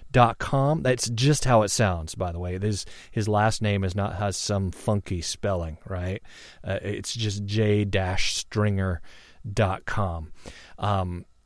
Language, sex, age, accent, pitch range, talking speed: English, male, 30-49, American, 105-130 Hz, 155 wpm